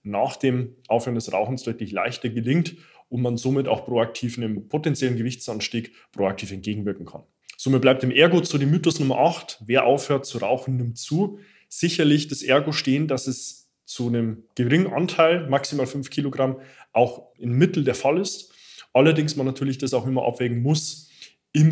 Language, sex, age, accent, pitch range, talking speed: German, male, 20-39, German, 120-150 Hz, 175 wpm